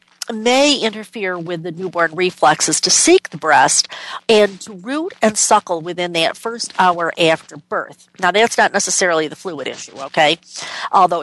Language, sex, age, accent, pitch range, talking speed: English, female, 50-69, American, 175-245 Hz, 160 wpm